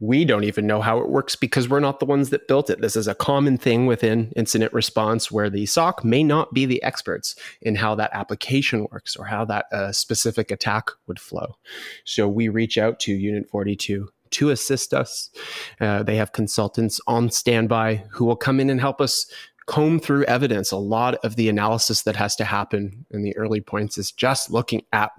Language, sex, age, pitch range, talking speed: English, male, 30-49, 105-120 Hz, 205 wpm